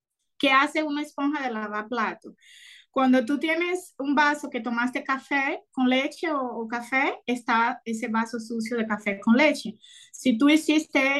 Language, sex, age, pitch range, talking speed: Spanish, female, 20-39, 230-290 Hz, 165 wpm